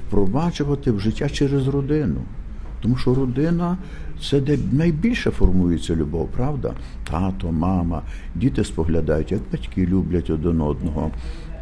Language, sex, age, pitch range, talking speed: Ukrainian, male, 60-79, 80-125 Hz, 125 wpm